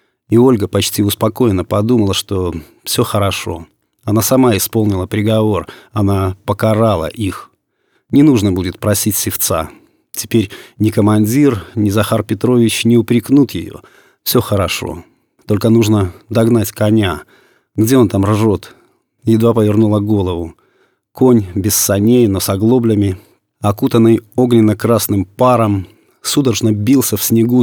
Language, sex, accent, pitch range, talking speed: Russian, male, native, 100-115 Hz, 120 wpm